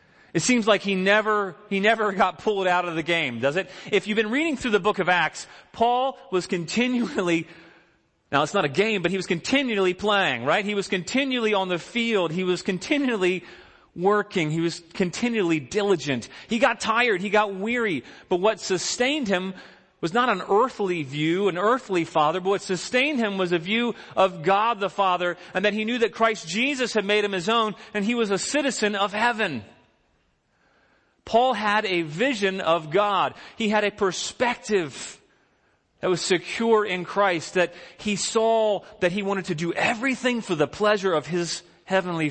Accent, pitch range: American, 175-225 Hz